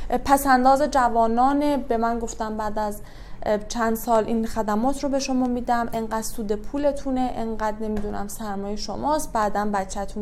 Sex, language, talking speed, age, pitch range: female, Persian, 145 wpm, 20-39, 215-280 Hz